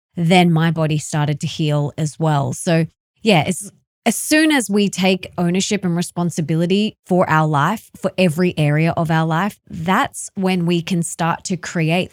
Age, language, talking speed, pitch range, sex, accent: 20-39, English, 175 wpm, 160-210 Hz, female, Australian